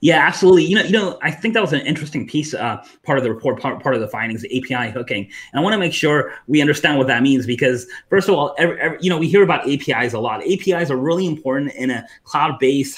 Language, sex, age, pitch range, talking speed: English, male, 30-49, 130-155 Hz, 265 wpm